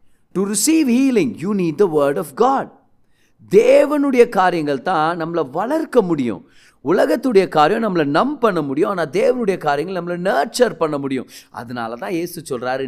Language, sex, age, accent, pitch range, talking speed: Tamil, male, 30-49, native, 135-190 Hz, 145 wpm